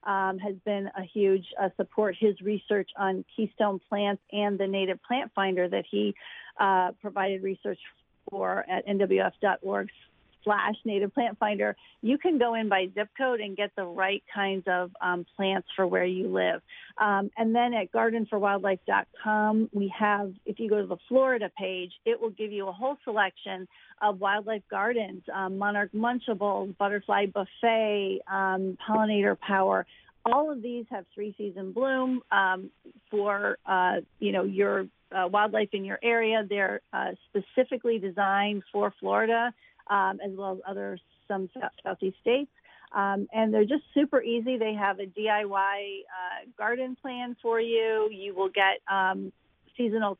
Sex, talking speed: female, 155 wpm